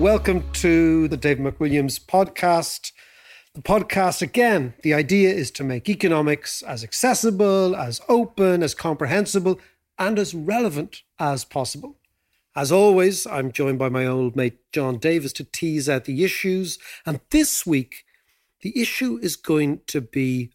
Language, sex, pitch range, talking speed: English, male, 130-175 Hz, 145 wpm